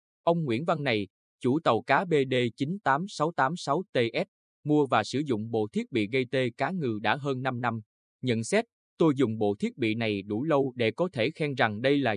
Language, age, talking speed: Vietnamese, 20-39, 195 wpm